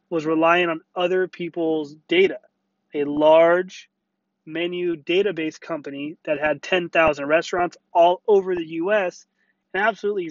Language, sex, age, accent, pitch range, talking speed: English, male, 30-49, American, 160-190 Hz, 120 wpm